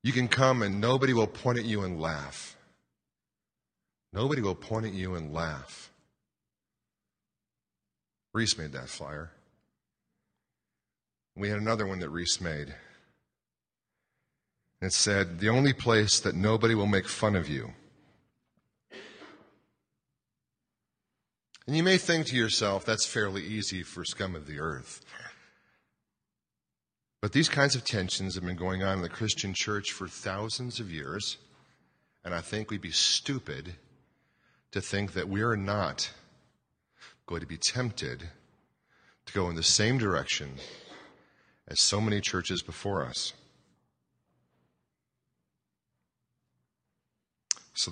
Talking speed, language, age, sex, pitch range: 125 wpm, English, 40-59, male, 85-110 Hz